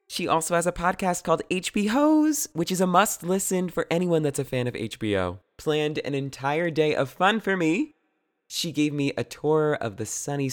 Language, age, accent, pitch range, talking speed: English, 20-39, American, 115-185 Hz, 195 wpm